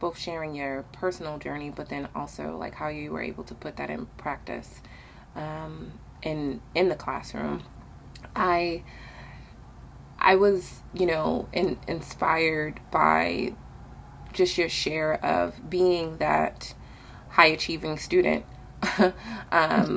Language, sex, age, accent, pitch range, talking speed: English, female, 20-39, American, 125-175 Hz, 125 wpm